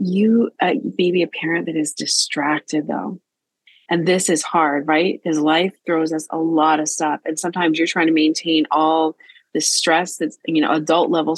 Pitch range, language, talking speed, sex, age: 150-175 Hz, English, 190 wpm, female, 30-49